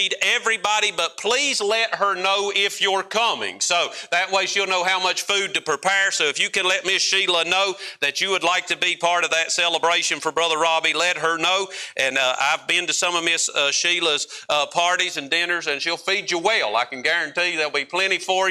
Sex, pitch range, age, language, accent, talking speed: male, 155-195 Hz, 50-69, English, American, 225 wpm